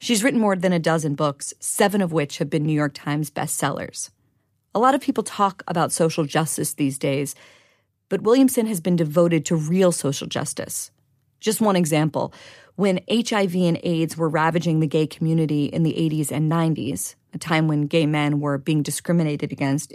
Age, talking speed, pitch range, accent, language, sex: 40-59, 185 wpm, 145-180 Hz, American, English, female